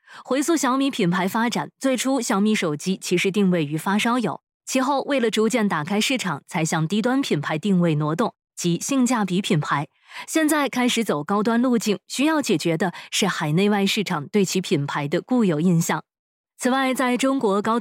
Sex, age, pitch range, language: female, 20-39, 180-235 Hz, Chinese